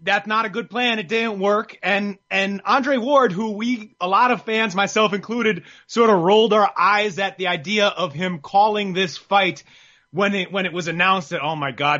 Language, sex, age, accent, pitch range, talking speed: English, male, 30-49, American, 180-220 Hz, 215 wpm